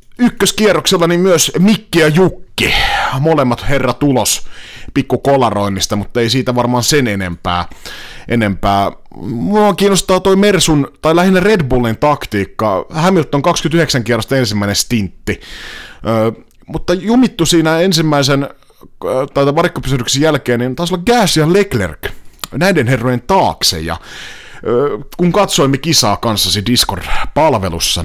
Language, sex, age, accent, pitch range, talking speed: Finnish, male, 30-49, native, 110-170 Hz, 115 wpm